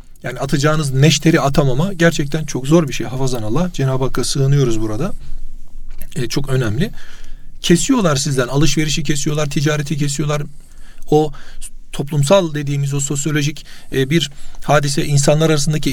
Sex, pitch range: male, 130-155 Hz